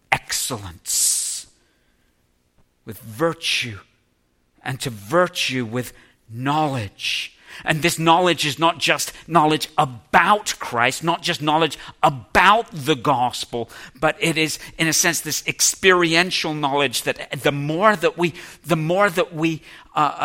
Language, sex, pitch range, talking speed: English, male, 120-165 Hz, 125 wpm